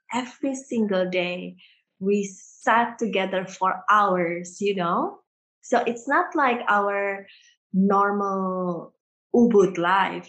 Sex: female